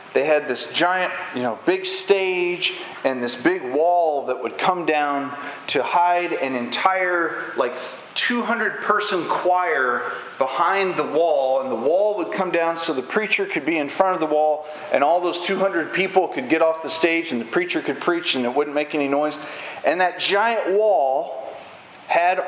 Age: 40-59